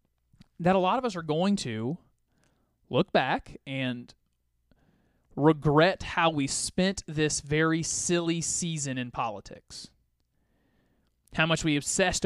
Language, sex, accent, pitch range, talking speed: English, male, American, 125-175 Hz, 120 wpm